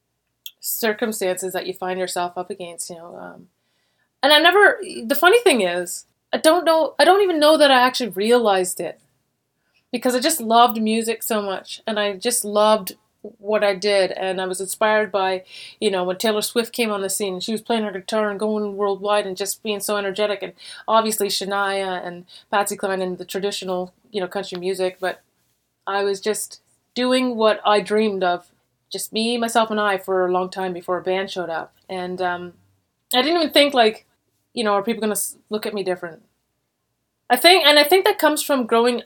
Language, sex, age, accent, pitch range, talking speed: English, female, 30-49, American, 185-230 Hz, 205 wpm